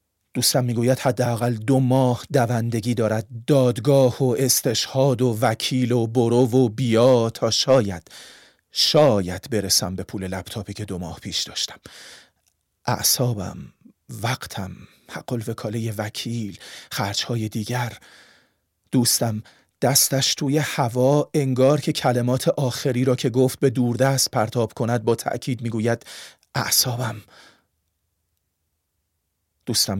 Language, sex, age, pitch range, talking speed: Persian, male, 40-59, 100-135 Hz, 110 wpm